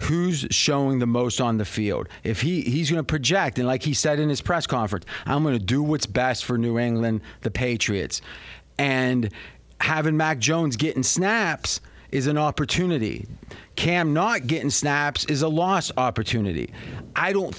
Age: 40-59